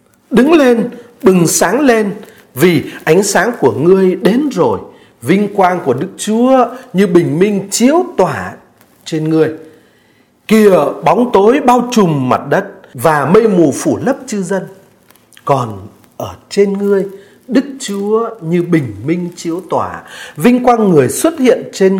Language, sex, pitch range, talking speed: Vietnamese, male, 165-235 Hz, 150 wpm